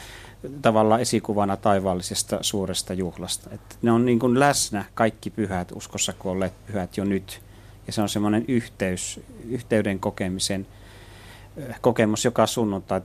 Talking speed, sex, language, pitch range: 130 wpm, male, Finnish, 100-110 Hz